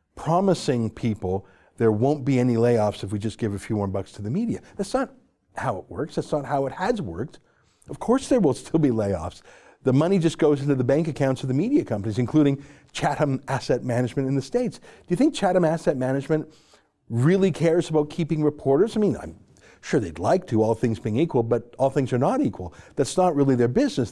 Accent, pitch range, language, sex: American, 120-170 Hz, English, male